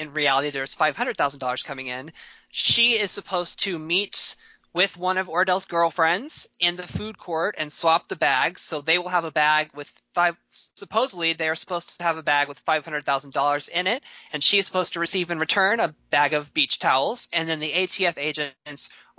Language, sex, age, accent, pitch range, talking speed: English, male, 20-39, American, 145-185 Hz, 195 wpm